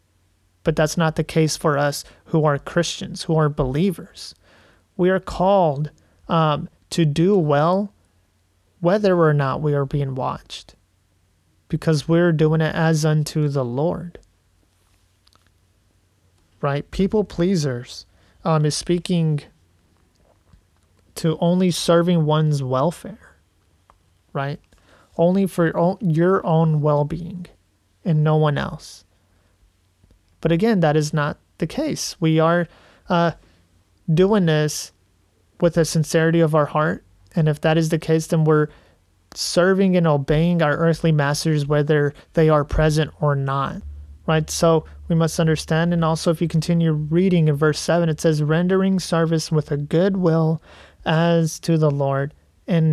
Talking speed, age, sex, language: 135 wpm, 30-49, male, English